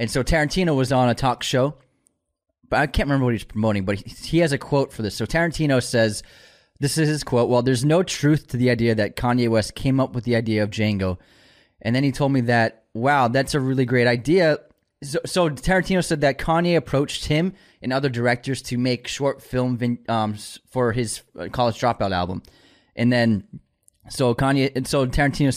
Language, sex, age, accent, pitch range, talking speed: English, male, 20-39, American, 115-140 Hz, 200 wpm